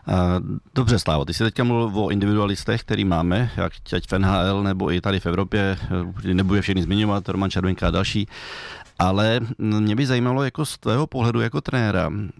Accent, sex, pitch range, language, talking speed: native, male, 95-110 Hz, Czech, 180 wpm